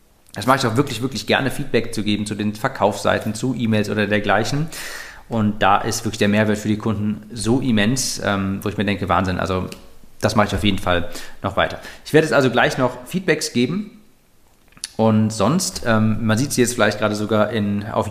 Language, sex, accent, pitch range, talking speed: German, male, German, 105-125 Hz, 200 wpm